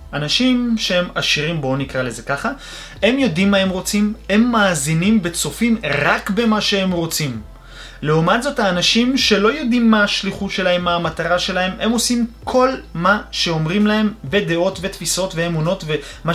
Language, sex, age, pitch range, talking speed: Hebrew, male, 20-39, 145-205 Hz, 145 wpm